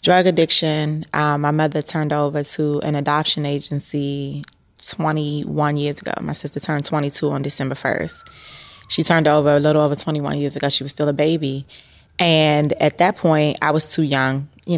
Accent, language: American, English